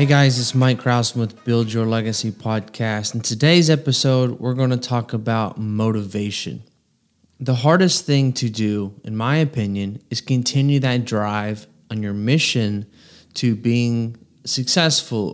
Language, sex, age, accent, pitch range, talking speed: English, male, 20-39, American, 115-145 Hz, 145 wpm